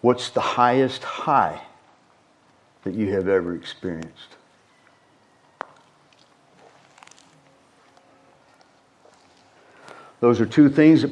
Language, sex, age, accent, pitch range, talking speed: English, male, 50-69, American, 115-140 Hz, 75 wpm